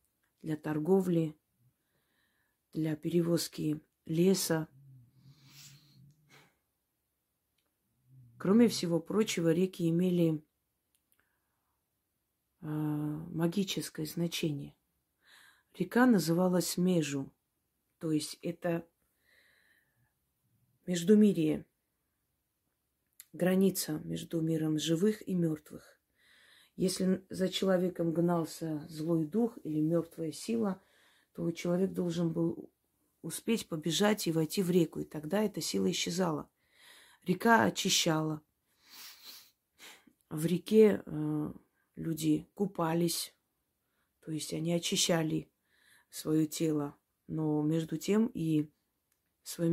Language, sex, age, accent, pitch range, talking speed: Russian, female, 40-59, native, 150-175 Hz, 85 wpm